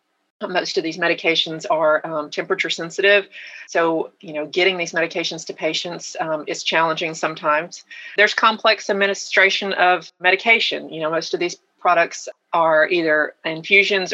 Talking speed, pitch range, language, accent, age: 145 wpm, 160-195 Hz, English, American, 40-59